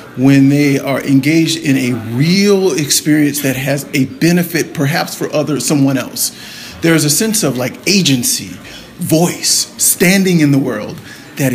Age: 40-59